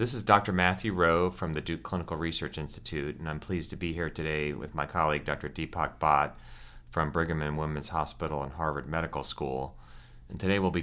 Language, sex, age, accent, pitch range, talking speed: English, male, 30-49, American, 75-90 Hz, 205 wpm